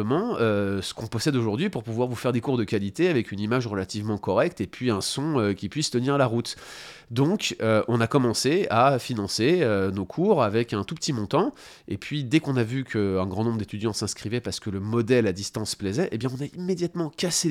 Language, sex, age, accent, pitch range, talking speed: French, male, 30-49, French, 105-130 Hz, 235 wpm